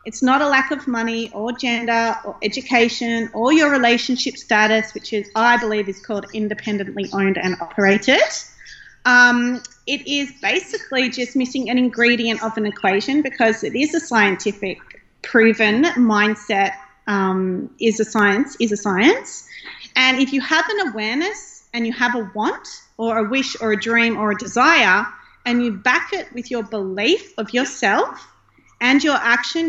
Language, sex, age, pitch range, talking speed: English, female, 30-49, 210-255 Hz, 165 wpm